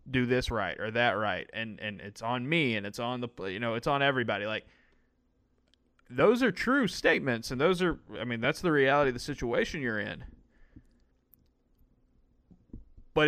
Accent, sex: American, male